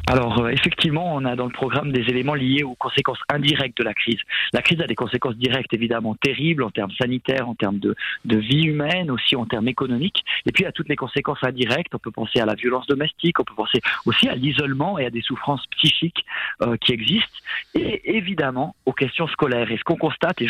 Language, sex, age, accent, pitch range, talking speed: French, male, 30-49, French, 120-155 Hz, 220 wpm